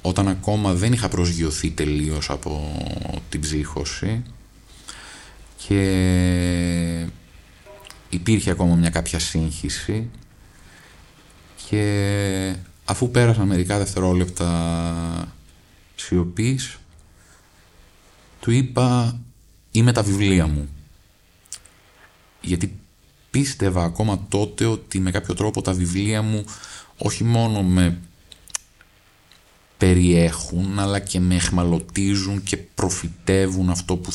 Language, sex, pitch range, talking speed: Greek, male, 85-105 Hz, 85 wpm